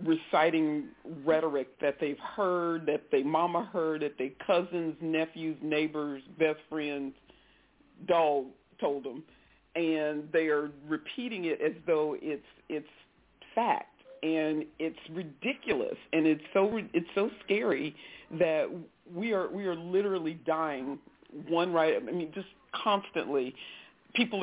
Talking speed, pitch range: 140 wpm, 160-235 Hz